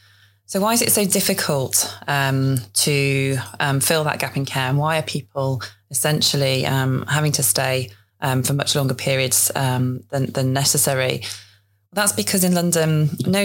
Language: English